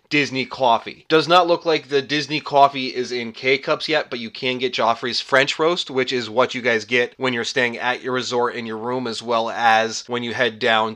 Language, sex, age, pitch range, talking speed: English, male, 20-39, 120-155 Hz, 230 wpm